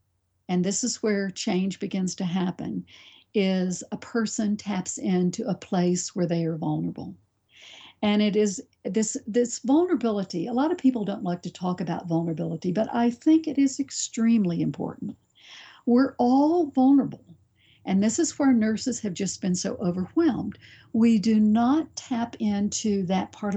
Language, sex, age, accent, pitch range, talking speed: English, female, 60-79, American, 190-255 Hz, 160 wpm